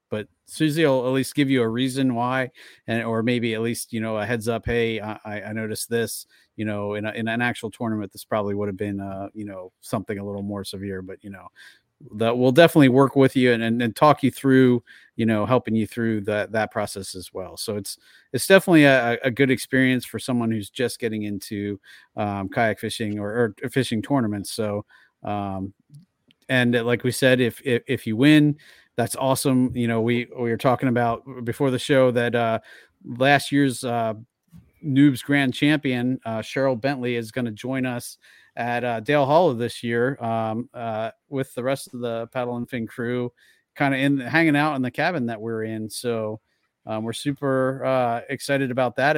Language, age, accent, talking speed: English, 40-59, American, 205 wpm